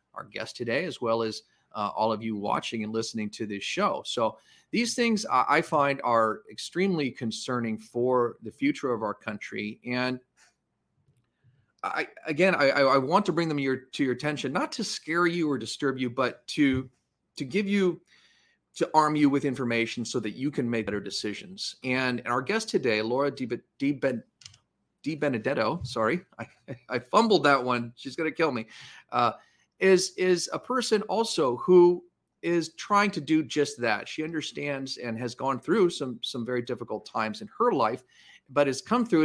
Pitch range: 115-160 Hz